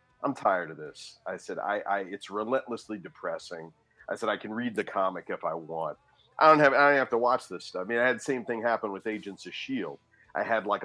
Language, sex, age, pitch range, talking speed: English, male, 40-59, 90-125 Hz, 255 wpm